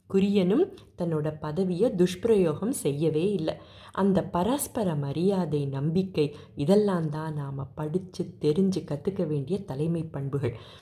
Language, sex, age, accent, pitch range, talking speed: Tamil, female, 30-49, native, 150-215 Hz, 105 wpm